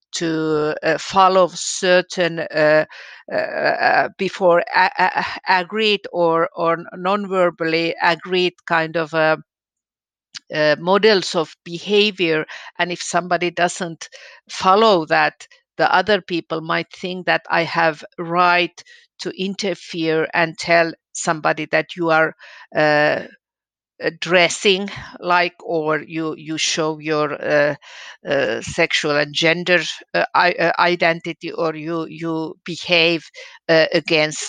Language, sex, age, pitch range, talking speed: Finnish, female, 50-69, 155-180 Hz, 120 wpm